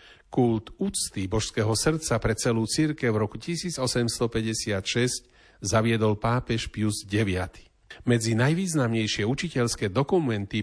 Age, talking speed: 40-59, 100 wpm